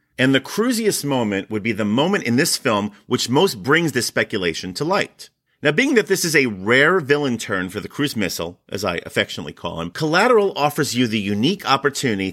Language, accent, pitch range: English, American, 115-160 Hz